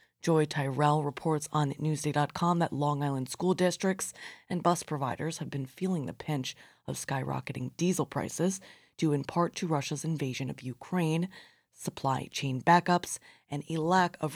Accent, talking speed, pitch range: American, 155 wpm, 140-170 Hz